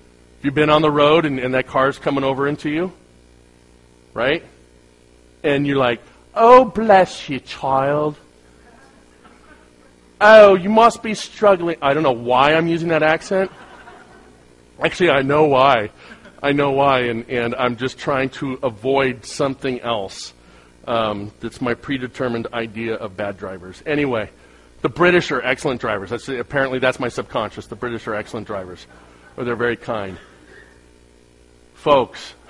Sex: male